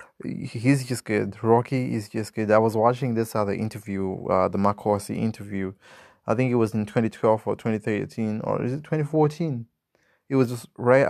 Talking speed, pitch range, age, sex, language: 180 wpm, 105-130 Hz, 20-39, male, English